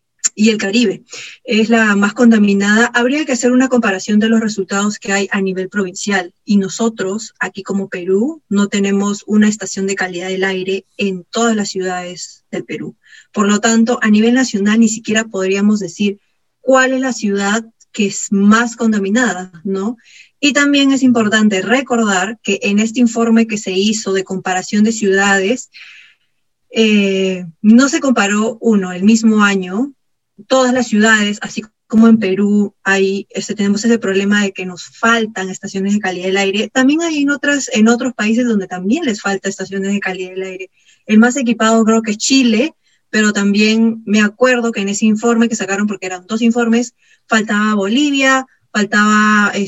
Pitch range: 195-235 Hz